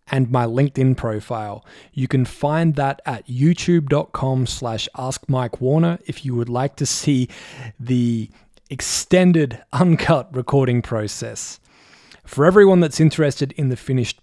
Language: English